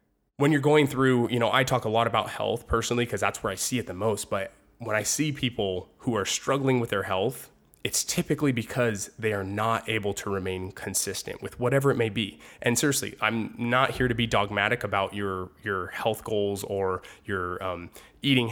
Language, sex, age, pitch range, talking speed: English, male, 20-39, 100-125 Hz, 205 wpm